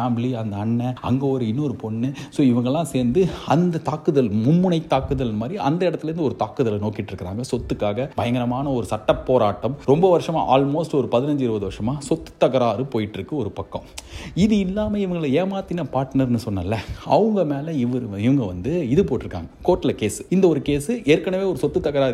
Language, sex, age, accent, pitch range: Tamil, male, 30-49, native, 110-140 Hz